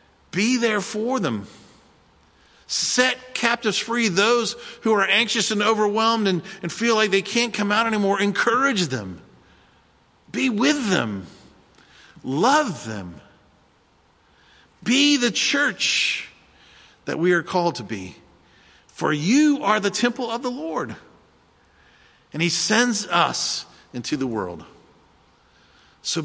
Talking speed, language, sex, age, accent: 125 wpm, English, male, 50-69, American